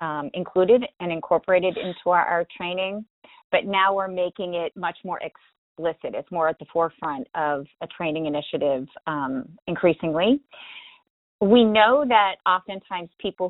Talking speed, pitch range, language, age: 140 wpm, 165-200 Hz, English, 30-49